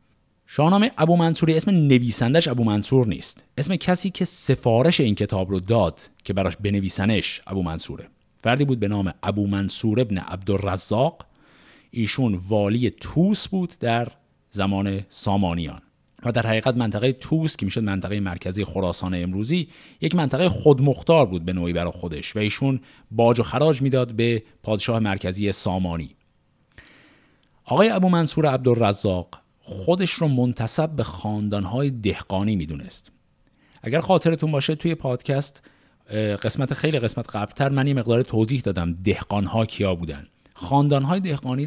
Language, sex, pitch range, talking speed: Persian, male, 100-140 Hz, 140 wpm